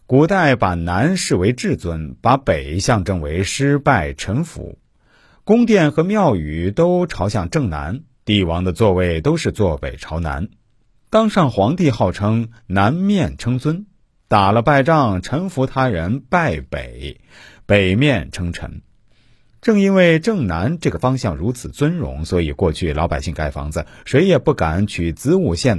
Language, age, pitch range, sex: Chinese, 50-69, 85-145 Hz, male